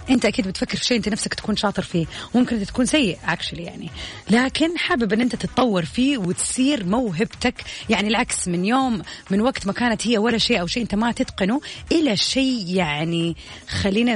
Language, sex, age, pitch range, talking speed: Arabic, female, 30-49, 190-255 Hz, 180 wpm